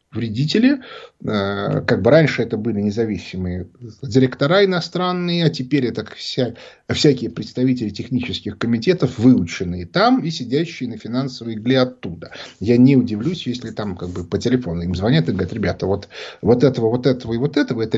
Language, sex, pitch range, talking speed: Russian, male, 110-150 Hz, 160 wpm